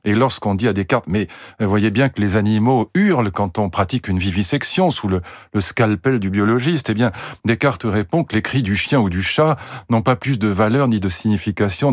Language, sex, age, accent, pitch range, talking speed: French, male, 50-69, French, 105-140 Hz, 215 wpm